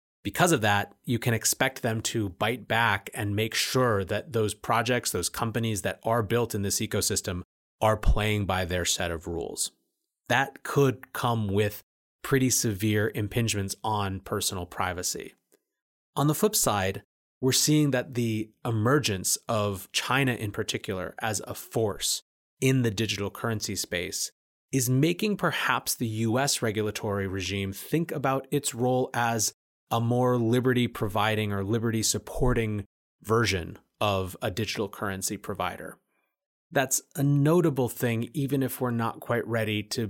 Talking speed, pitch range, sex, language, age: 145 wpm, 100-125 Hz, male, English, 30-49